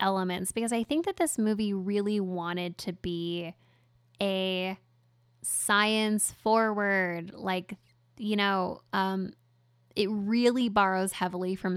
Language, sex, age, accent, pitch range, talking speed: English, female, 10-29, American, 175-210 Hz, 115 wpm